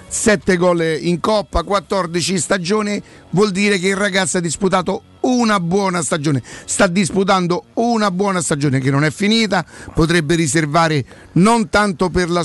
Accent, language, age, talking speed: native, Italian, 50-69, 150 wpm